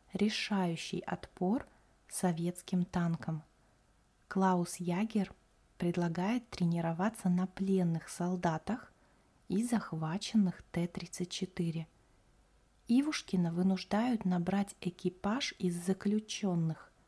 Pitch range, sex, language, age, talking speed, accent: 170-200 Hz, female, Russian, 20-39, 70 wpm, native